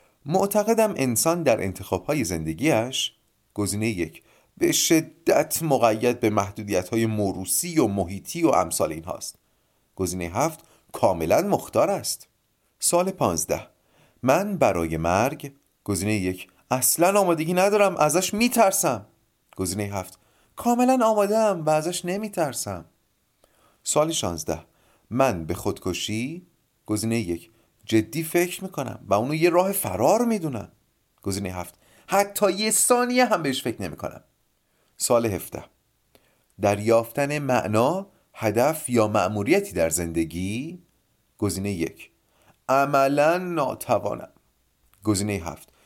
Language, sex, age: Persian, male, 30-49